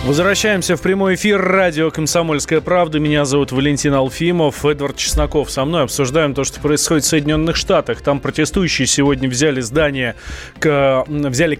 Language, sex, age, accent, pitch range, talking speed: Russian, male, 20-39, native, 120-155 Hz, 140 wpm